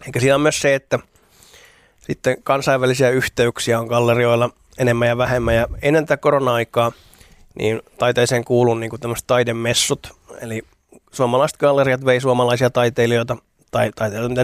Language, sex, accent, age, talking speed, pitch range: Finnish, male, native, 30-49, 125 wpm, 115-125 Hz